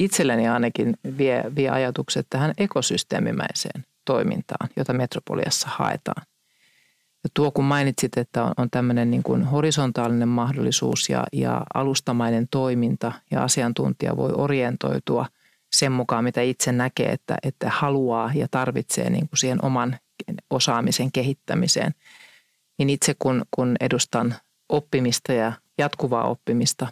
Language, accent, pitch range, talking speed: Finnish, native, 120-145 Hz, 110 wpm